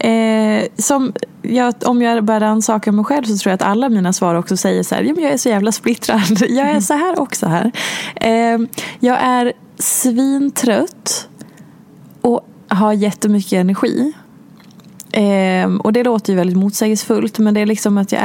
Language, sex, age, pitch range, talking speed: Swedish, female, 20-39, 190-225 Hz, 175 wpm